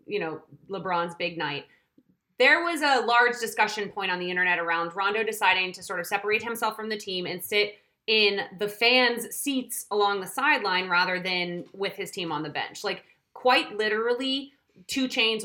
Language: English